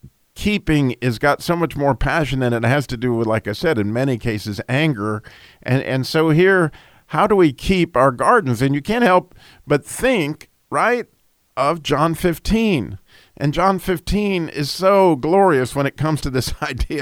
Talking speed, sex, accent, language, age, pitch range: 185 wpm, male, American, English, 50-69, 120-155 Hz